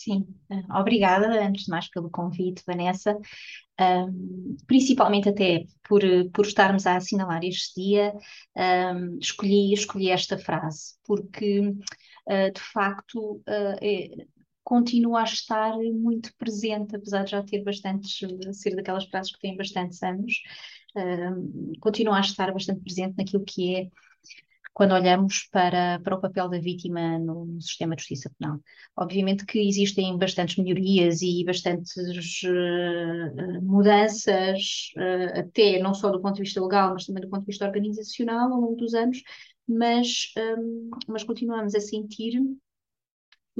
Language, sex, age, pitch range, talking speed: Portuguese, female, 20-39, 180-210 Hz, 140 wpm